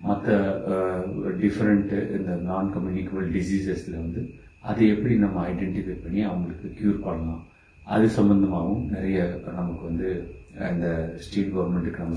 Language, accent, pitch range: Tamil, native, 90-110 Hz